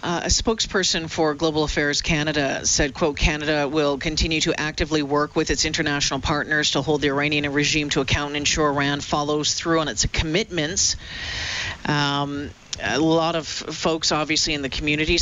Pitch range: 150-180 Hz